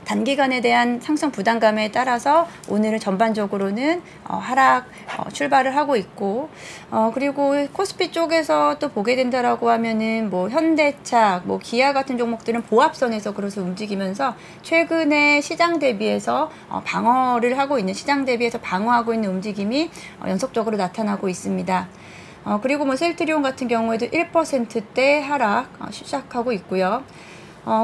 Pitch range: 215-290 Hz